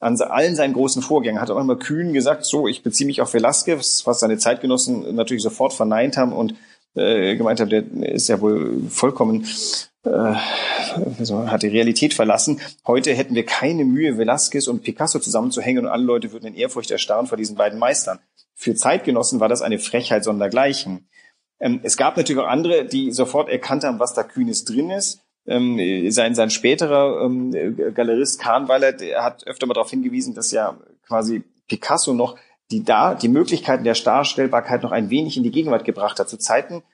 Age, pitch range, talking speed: 30-49, 115-160 Hz, 185 wpm